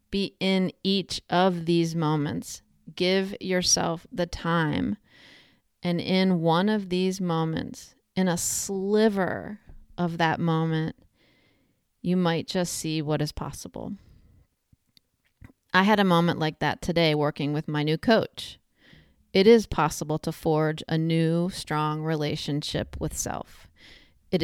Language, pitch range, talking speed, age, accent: English, 155-185 Hz, 130 wpm, 30-49, American